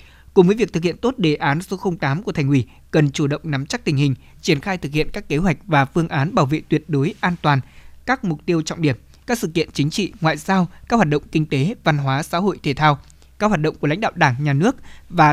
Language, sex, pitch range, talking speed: Vietnamese, male, 145-185 Hz, 270 wpm